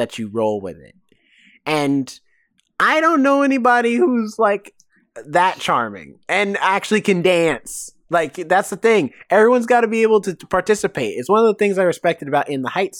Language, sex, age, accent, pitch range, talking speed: English, male, 20-39, American, 145-205 Hz, 185 wpm